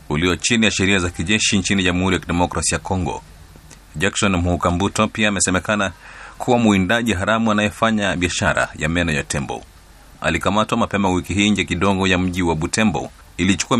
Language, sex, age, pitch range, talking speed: Swahili, male, 30-49, 85-100 Hz, 160 wpm